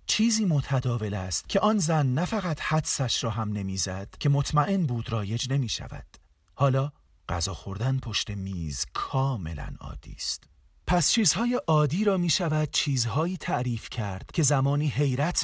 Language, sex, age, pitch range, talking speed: Persian, male, 40-59, 95-150 Hz, 150 wpm